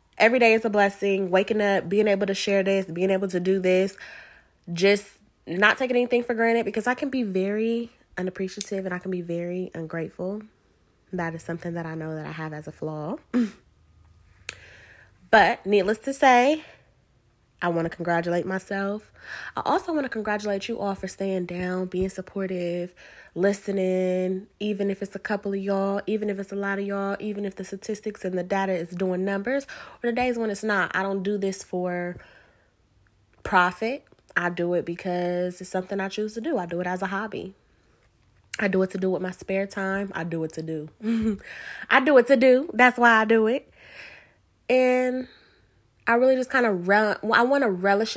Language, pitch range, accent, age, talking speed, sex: English, 185-225 Hz, American, 20-39, 195 wpm, female